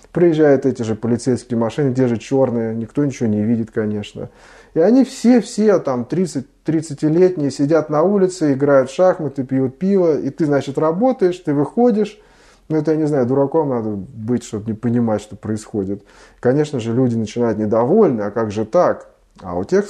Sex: male